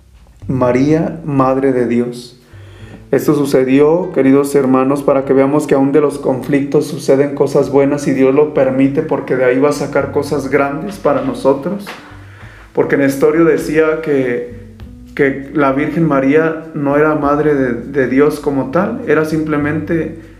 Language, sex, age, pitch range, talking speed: Spanish, male, 40-59, 130-150 Hz, 150 wpm